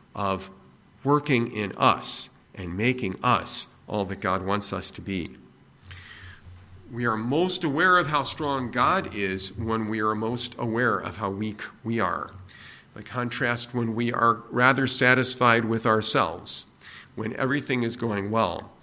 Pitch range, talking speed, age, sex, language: 100-130 Hz, 150 wpm, 50-69, male, English